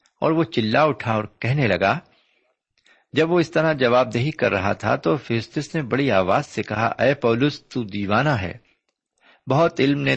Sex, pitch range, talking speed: male, 100-140 Hz, 185 wpm